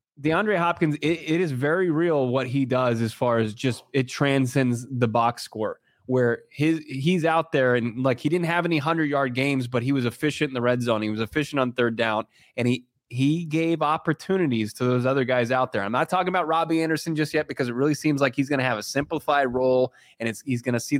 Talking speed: 240 wpm